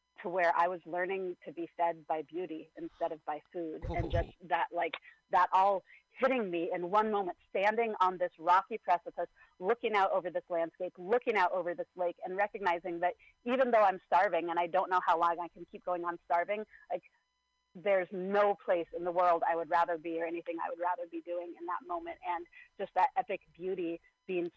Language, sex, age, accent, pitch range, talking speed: English, female, 30-49, American, 170-195 Hz, 210 wpm